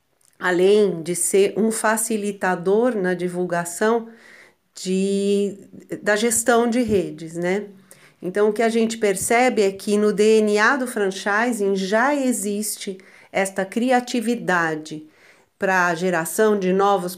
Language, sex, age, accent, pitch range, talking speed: Portuguese, female, 40-59, Brazilian, 185-215 Hz, 115 wpm